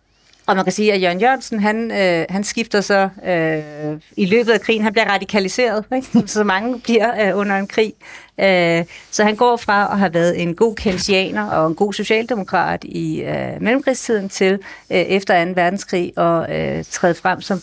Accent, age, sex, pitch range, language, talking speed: native, 40-59, female, 175-215 Hz, Danish, 190 wpm